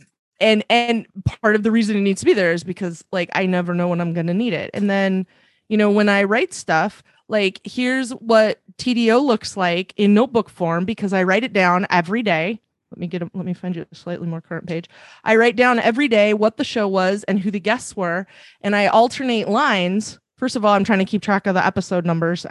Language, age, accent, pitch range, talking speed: English, 20-39, American, 175-215 Hz, 240 wpm